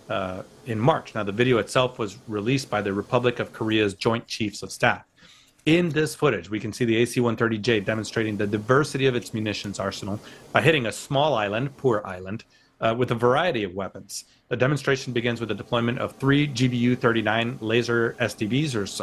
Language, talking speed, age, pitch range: English, 185 wpm, 30-49, 105-125 Hz